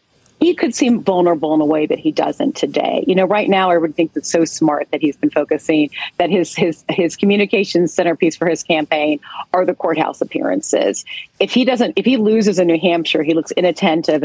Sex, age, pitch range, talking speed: female, 40-59, 155-190 Hz, 210 wpm